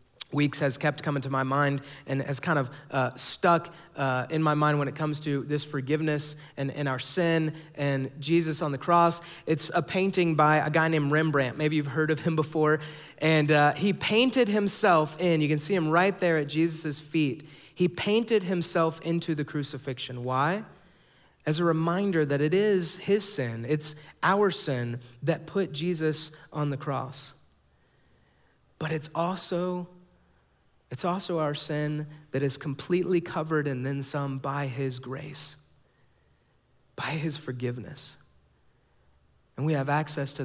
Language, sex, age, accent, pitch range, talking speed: English, male, 30-49, American, 130-160 Hz, 165 wpm